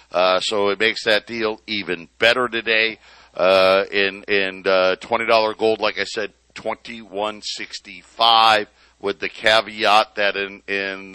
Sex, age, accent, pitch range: male, 50-69, American, 100-120 Hz